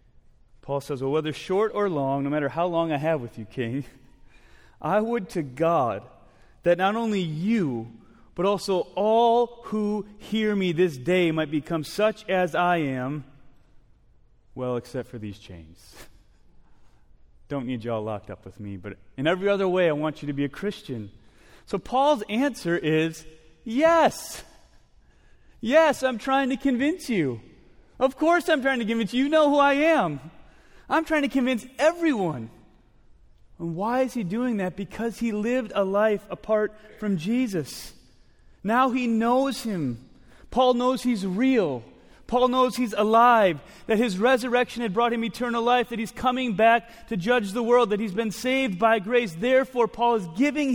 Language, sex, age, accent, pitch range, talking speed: English, male, 30-49, American, 155-245 Hz, 170 wpm